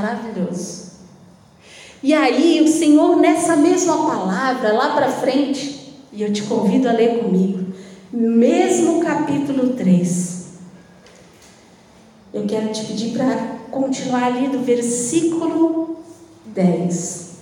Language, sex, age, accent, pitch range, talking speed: Portuguese, female, 40-59, Brazilian, 210-260 Hz, 105 wpm